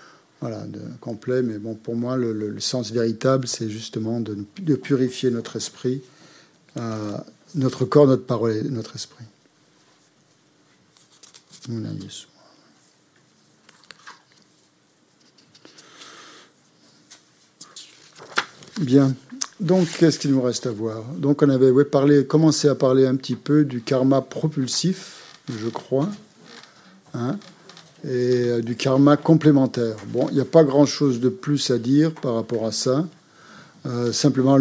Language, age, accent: French, 50-69, French